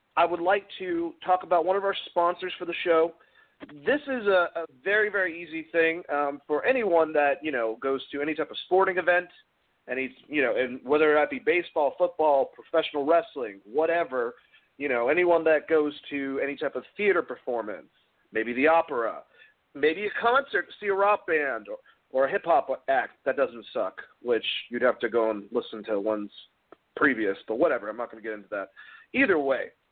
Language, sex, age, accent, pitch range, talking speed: English, male, 40-59, American, 140-225 Hz, 195 wpm